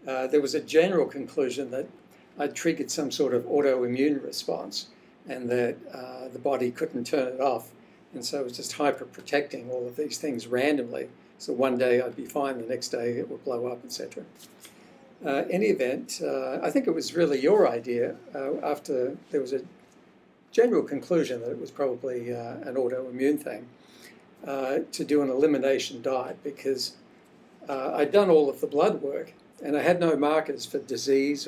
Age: 60-79